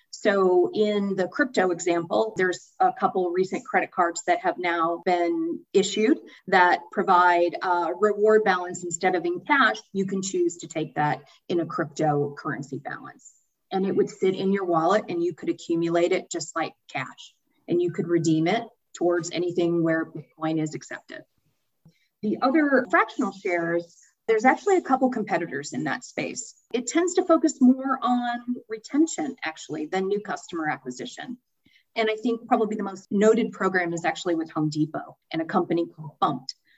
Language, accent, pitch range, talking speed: English, American, 175-235 Hz, 170 wpm